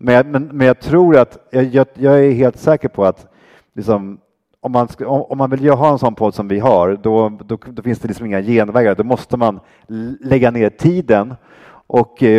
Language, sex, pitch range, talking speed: English, male, 100-130 Hz, 180 wpm